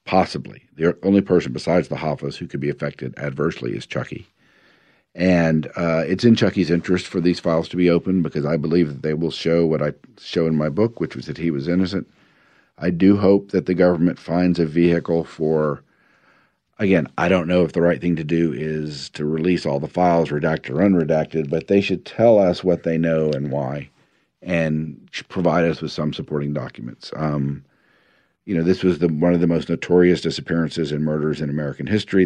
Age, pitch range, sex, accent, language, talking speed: 50-69, 75-90 Hz, male, American, English, 200 wpm